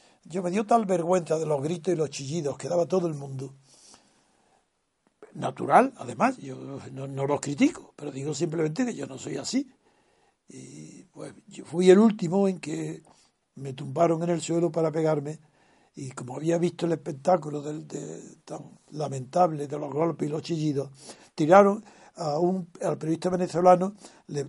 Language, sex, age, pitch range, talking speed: Spanish, male, 60-79, 145-180 Hz, 160 wpm